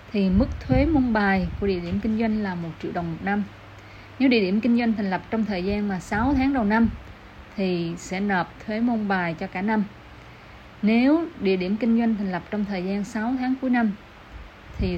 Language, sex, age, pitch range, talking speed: Vietnamese, female, 20-39, 175-225 Hz, 220 wpm